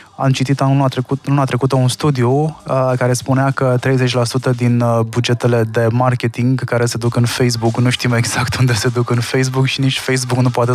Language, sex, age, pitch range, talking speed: Romanian, male, 20-39, 115-135 Hz, 190 wpm